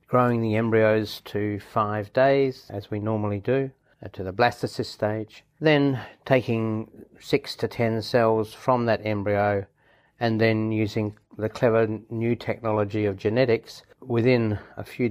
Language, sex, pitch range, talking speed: English, male, 105-120 Hz, 140 wpm